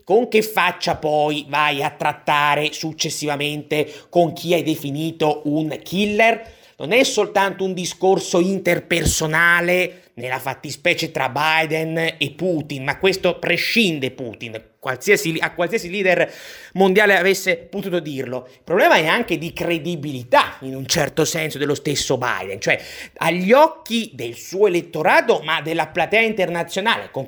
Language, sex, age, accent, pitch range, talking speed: Italian, male, 30-49, native, 155-190 Hz, 135 wpm